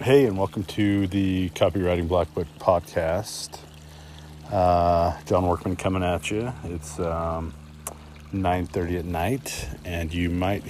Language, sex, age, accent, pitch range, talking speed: English, male, 30-49, American, 75-95 Hz, 130 wpm